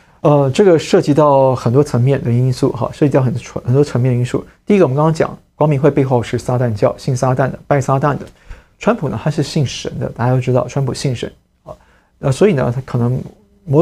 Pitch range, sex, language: 125-150 Hz, male, Chinese